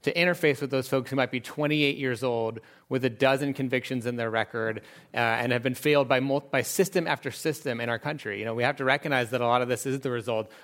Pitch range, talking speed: 120-140 Hz, 260 wpm